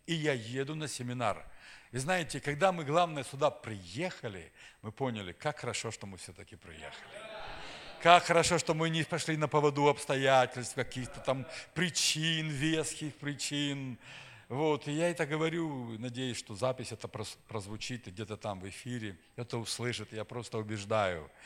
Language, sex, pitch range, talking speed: Russian, male, 110-150 Hz, 150 wpm